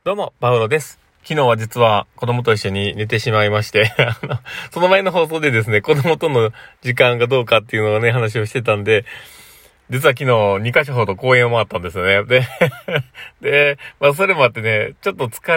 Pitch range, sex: 105-140 Hz, male